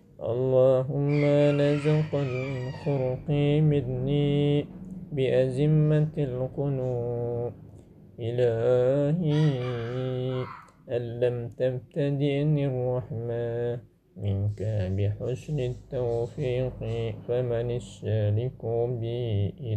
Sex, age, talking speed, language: male, 20-39, 40 wpm, Indonesian